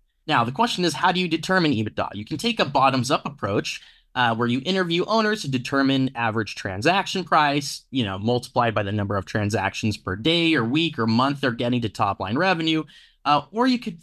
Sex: male